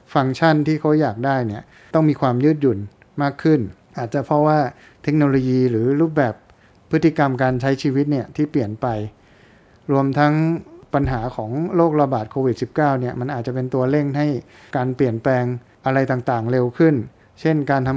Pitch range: 125-150 Hz